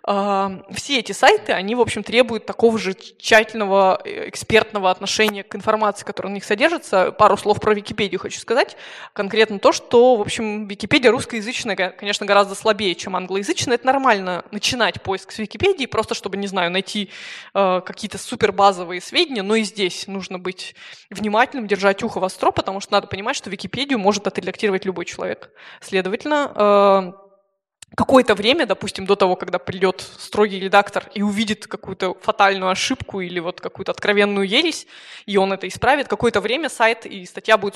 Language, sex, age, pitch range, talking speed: Russian, female, 20-39, 195-225 Hz, 165 wpm